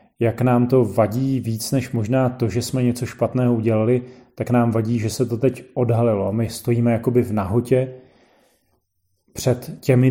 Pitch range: 115-130 Hz